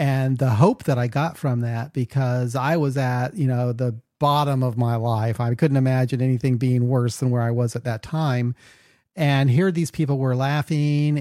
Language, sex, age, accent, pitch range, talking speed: English, male, 40-59, American, 125-155 Hz, 205 wpm